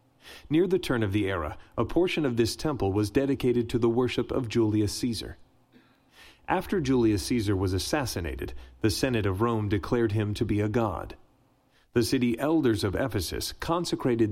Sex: male